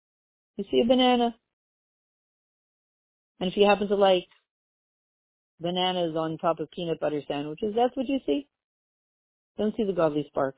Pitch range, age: 160-230 Hz, 40-59